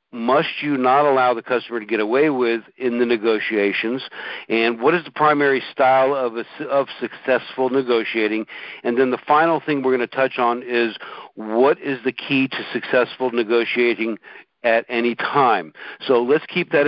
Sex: male